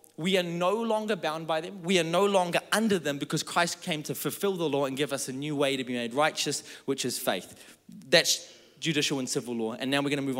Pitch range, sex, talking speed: 145-210 Hz, male, 250 wpm